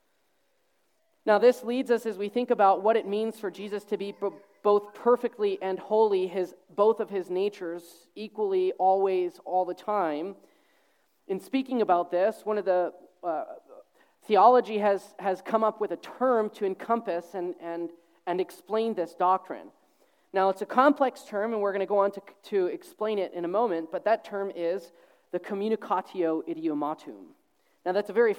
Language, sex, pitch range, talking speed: English, male, 185-235 Hz, 175 wpm